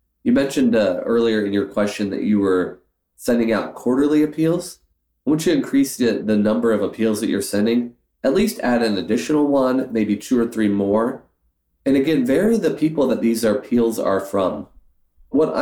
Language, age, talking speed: English, 30-49, 185 wpm